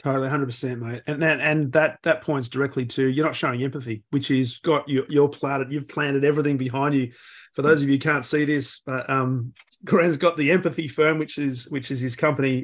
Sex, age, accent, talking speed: male, 30-49, Australian, 235 wpm